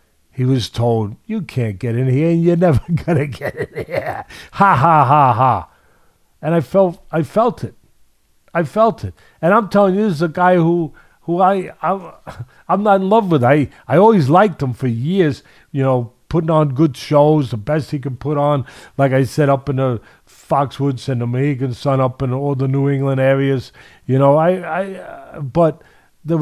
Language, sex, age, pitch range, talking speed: English, male, 50-69, 130-175 Hz, 200 wpm